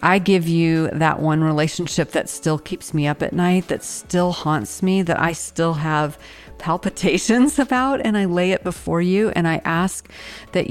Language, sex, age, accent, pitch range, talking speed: English, female, 40-59, American, 155-180 Hz, 185 wpm